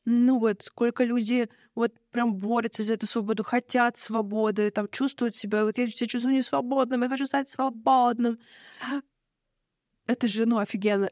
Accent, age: native, 20-39